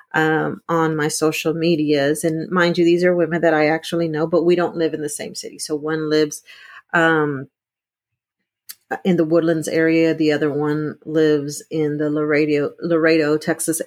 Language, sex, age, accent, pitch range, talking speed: English, female, 40-59, American, 155-190 Hz, 175 wpm